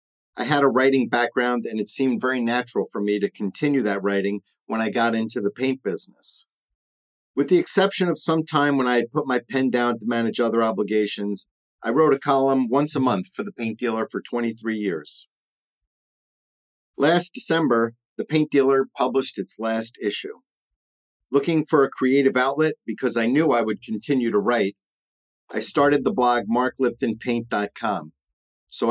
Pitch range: 105-135 Hz